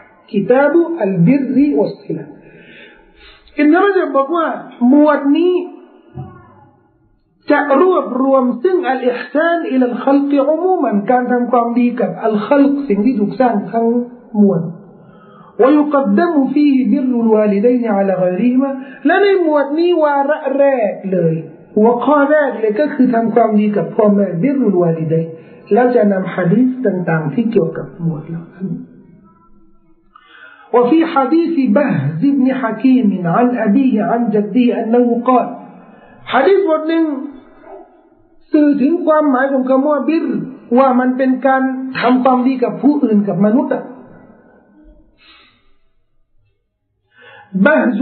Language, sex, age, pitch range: Thai, male, 50-69, 200-275 Hz